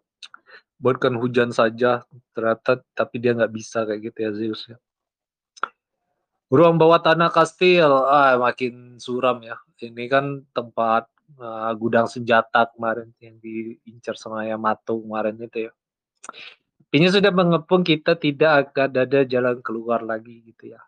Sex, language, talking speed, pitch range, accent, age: male, Indonesian, 135 wpm, 120-140 Hz, native, 20-39